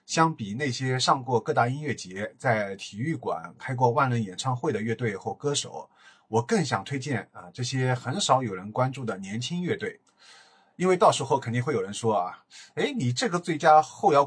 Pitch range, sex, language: 110-140 Hz, male, Chinese